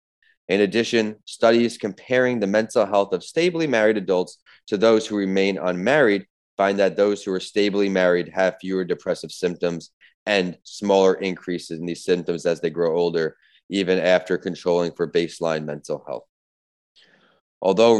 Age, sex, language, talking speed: 20-39, male, English, 150 wpm